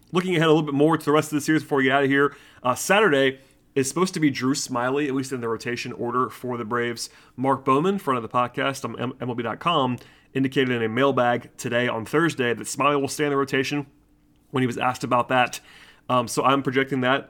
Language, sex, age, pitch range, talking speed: English, male, 30-49, 115-140 Hz, 235 wpm